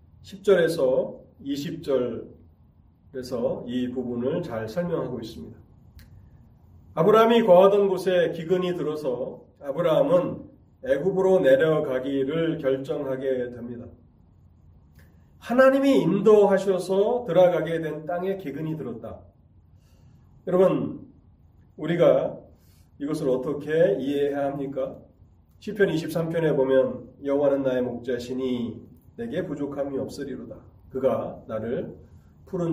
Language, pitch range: Korean, 125-190 Hz